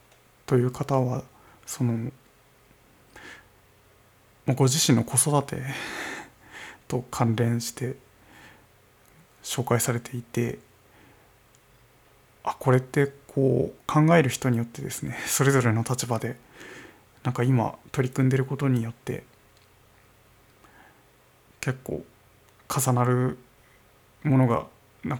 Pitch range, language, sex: 110-135 Hz, Japanese, male